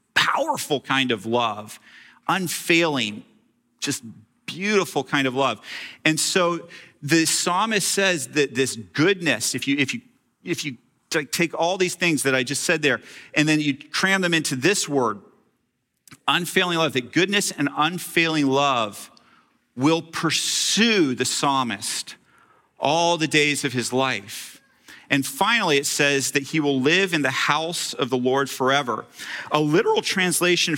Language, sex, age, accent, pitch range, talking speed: English, male, 40-59, American, 135-165 Hz, 140 wpm